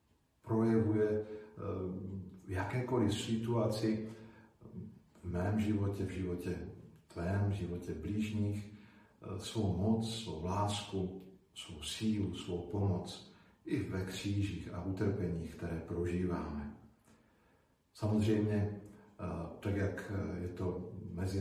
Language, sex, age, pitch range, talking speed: Slovak, male, 50-69, 90-110 Hz, 95 wpm